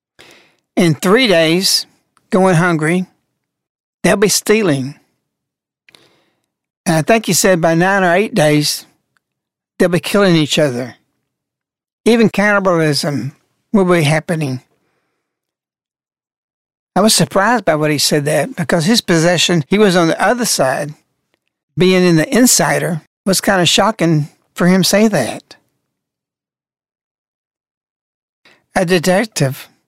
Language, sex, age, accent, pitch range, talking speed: English, male, 60-79, American, 160-210 Hz, 120 wpm